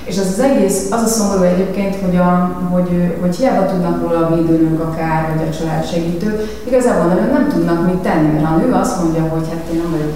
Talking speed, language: 225 wpm, Hungarian